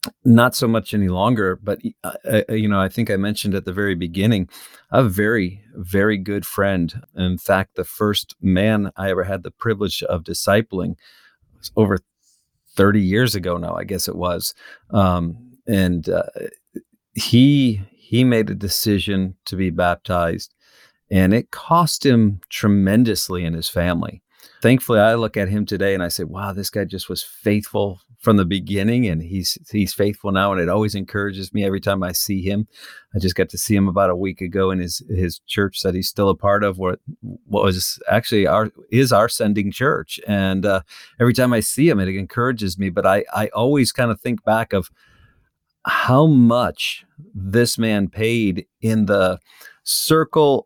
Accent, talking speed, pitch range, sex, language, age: American, 180 wpm, 95-115 Hz, male, English, 40-59